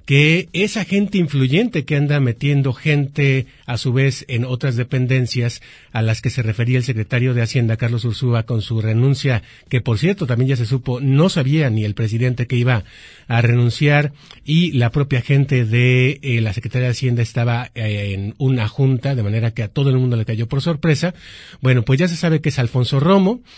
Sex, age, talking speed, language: male, 40-59, 200 wpm, Spanish